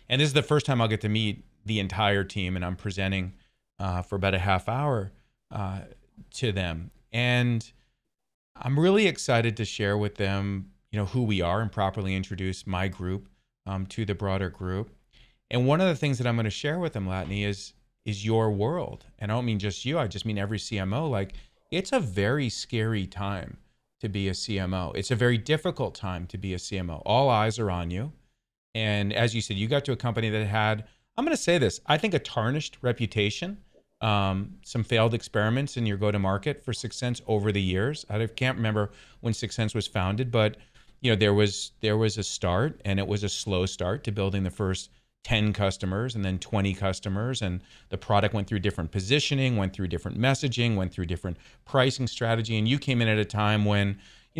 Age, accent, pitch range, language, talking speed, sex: 30-49, American, 100-120 Hz, English, 215 wpm, male